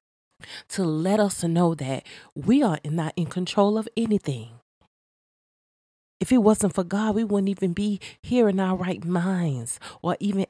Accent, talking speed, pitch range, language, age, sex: American, 160 wpm, 145-185 Hz, English, 30-49, female